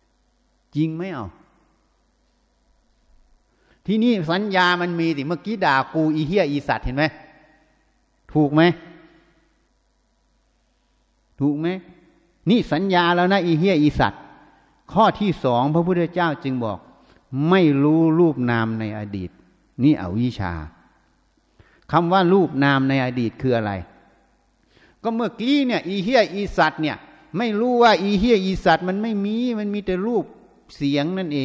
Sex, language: male, Thai